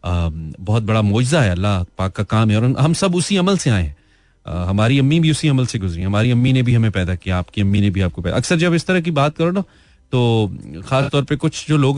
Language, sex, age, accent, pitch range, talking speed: Hindi, male, 30-49, native, 95-135 Hz, 260 wpm